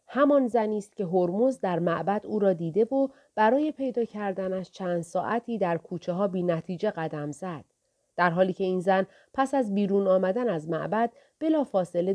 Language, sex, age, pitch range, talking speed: Persian, female, 40-59, 170-240 Hz, 175 wpm